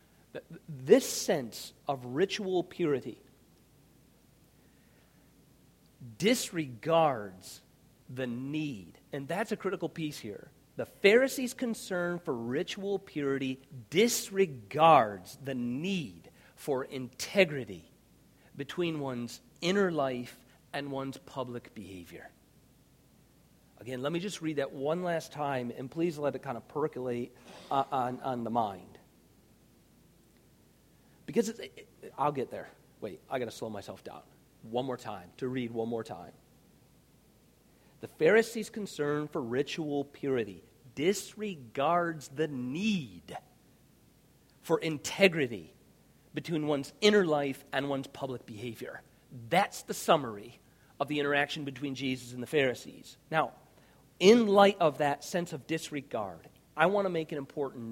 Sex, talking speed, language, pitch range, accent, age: male, 125 wpm, English, 125-175 Hz, American, 40-59